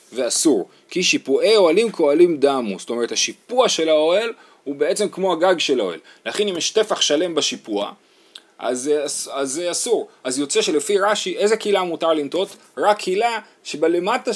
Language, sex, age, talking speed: Hebrew, male, 30-49, 175 wpm